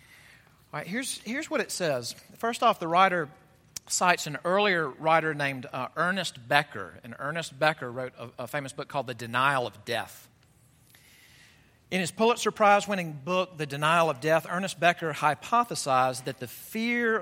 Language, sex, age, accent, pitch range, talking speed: English, male, 40-59, American, 135-190 Hz, 165 wpm